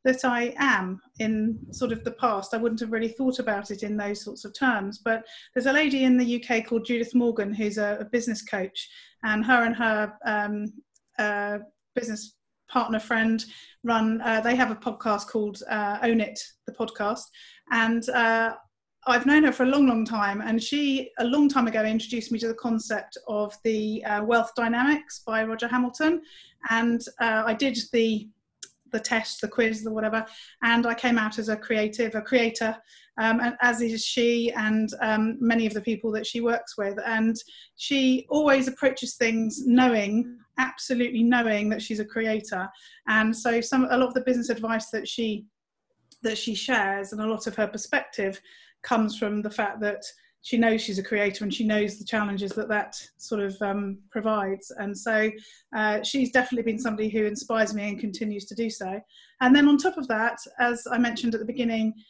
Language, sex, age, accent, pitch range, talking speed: English, female, 30-49, British, 215-245 Hz, 195 wpm